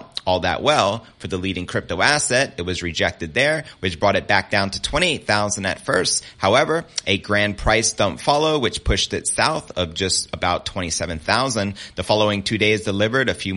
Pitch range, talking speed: 95-135 Hz, 185 wpm